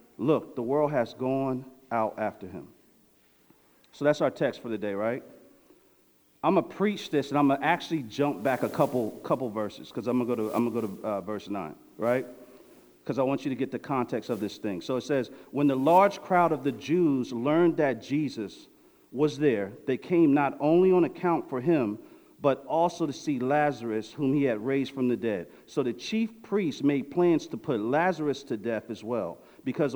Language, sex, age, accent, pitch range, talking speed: English, male, 50-69, American, 130-165 Hz, 210 wpm